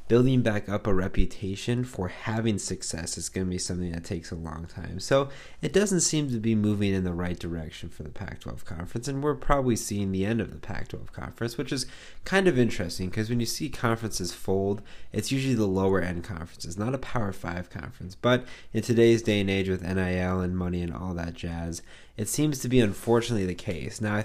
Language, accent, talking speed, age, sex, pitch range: English, American, 220 wpm, 20-39, male, 90-115 Hz